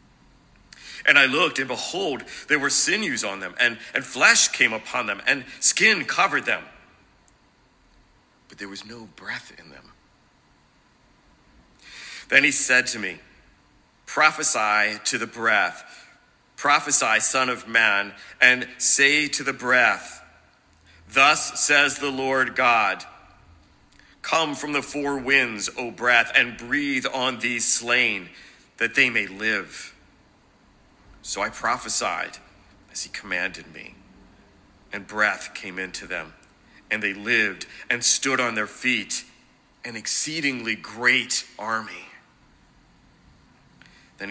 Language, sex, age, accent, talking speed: English, male, 50-69, American, 125 wpm